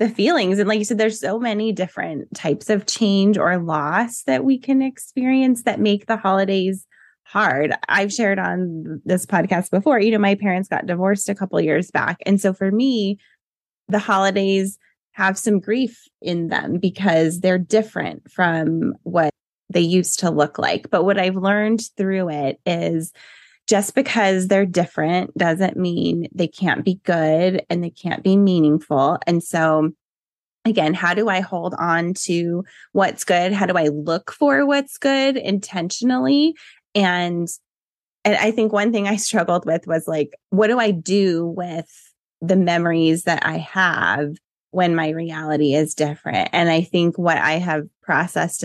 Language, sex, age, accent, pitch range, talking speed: English, female, 20-39, American, 170-210 Hz, 170 wpm